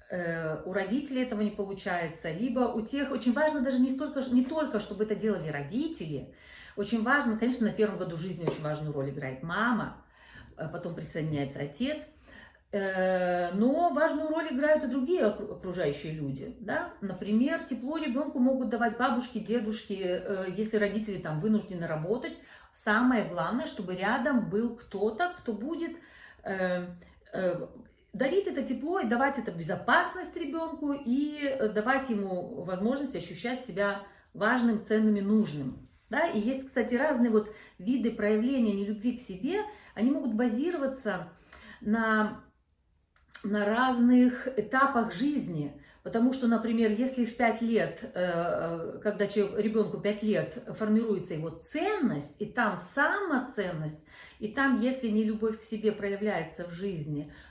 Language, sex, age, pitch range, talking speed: Russian, female, 40-59, 185-255 Hz, 130 wpm